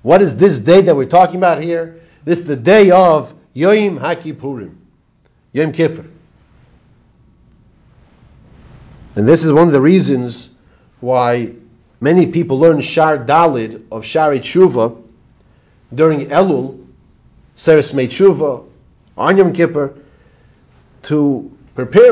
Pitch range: 150-210 Hz